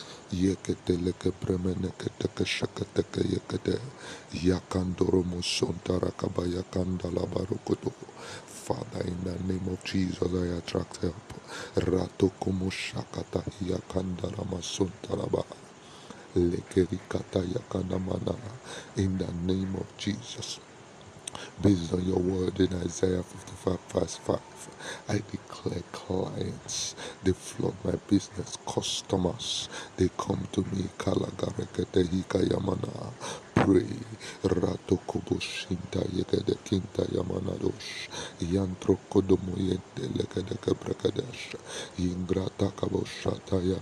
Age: 50-69